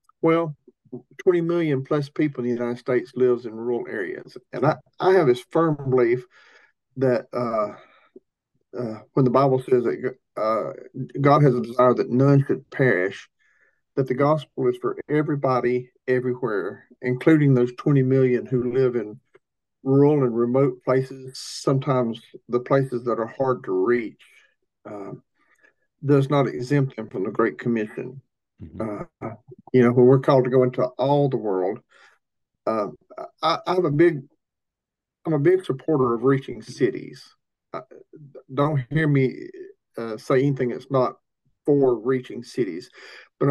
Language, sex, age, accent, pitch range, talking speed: English, male, 50-69, American, 125-145 Hz, 150 wpm